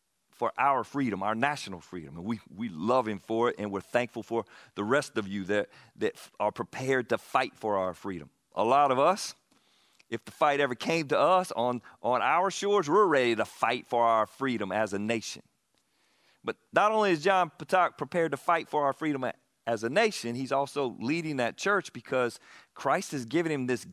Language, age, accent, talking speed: English, 40-59, American, 205 wpm